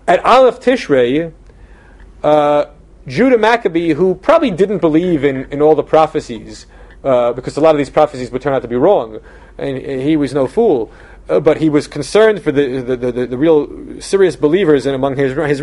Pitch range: 145-195 Hz